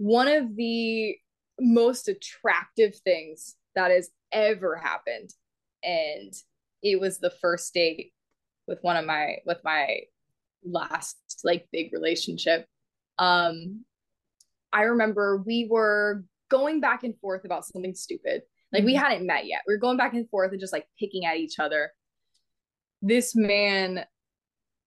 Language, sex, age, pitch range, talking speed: English, female, 20-39, 180-240 Hz, 140 wpm